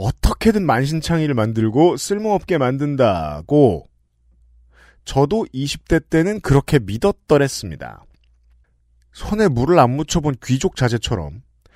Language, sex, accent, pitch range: Korean, male, native, 115-185 Hz